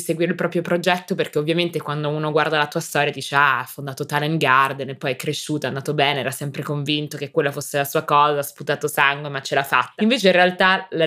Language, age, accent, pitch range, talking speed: Italian, 20-39, native, 145-170 Hz, 245 wpm